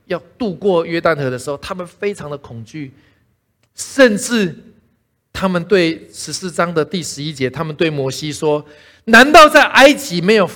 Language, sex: Chinese, male